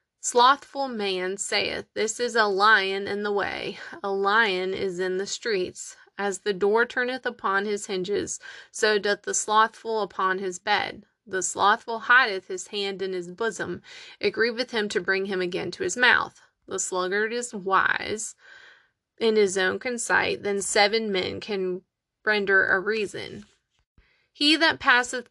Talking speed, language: 155 wpm, English